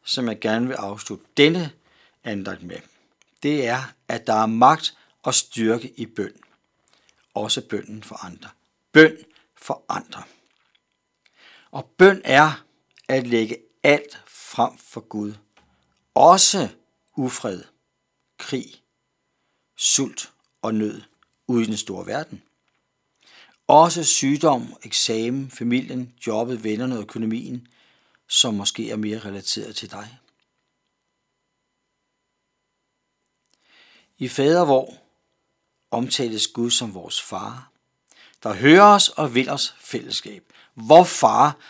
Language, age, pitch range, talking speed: Danish, 60-79, 110-145 Hz, 110 wpm